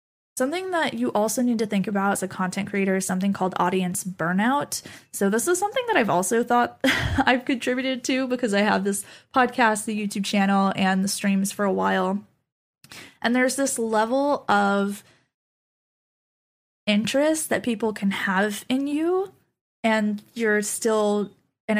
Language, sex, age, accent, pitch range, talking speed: English, female, 10-29, American, 195-230 Hz, 160 wpm